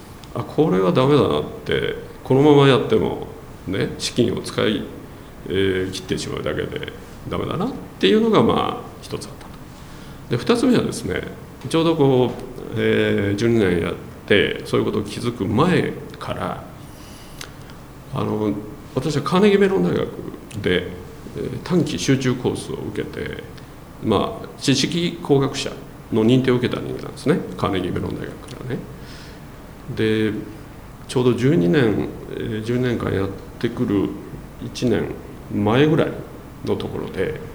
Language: Japanese